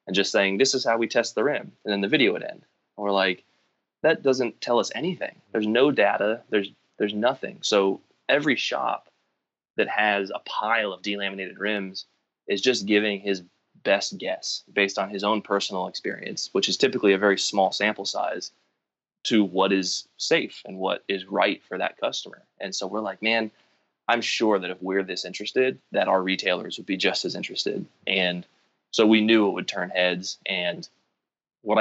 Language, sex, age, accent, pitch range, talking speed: English, male, 20-39, American, 95-105 Hz, 190 wpm